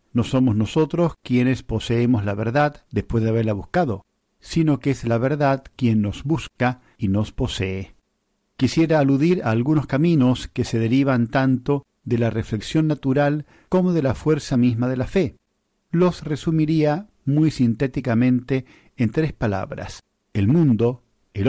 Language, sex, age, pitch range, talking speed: Spanish, male, 50-69, 115-155 Hz, 150 wpm